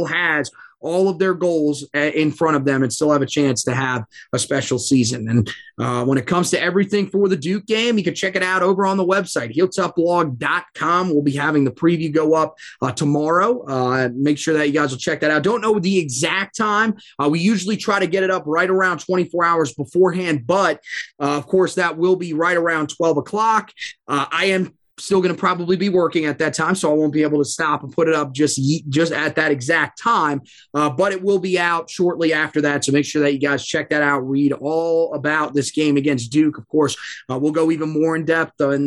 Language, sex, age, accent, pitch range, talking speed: English, male, 20-39, American, 145-180 Hz, 235 wpm